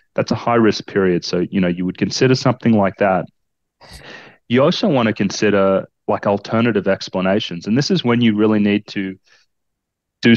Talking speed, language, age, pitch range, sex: 180 wpm, English, 30-49, 100-120 Hz, male